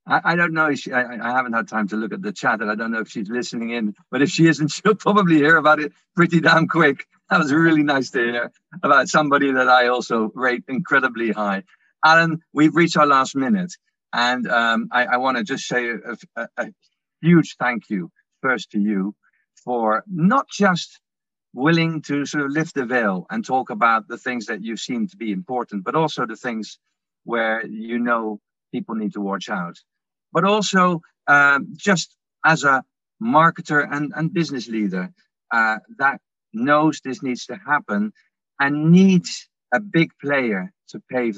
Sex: male